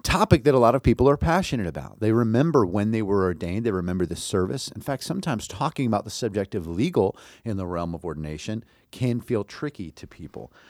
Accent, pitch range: American, 90-120 Hz